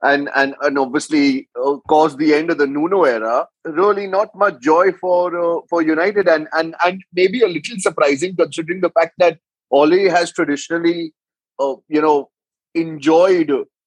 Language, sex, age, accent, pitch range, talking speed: English, male, 30-49, Indian, 150-180 Hz, 165 wpm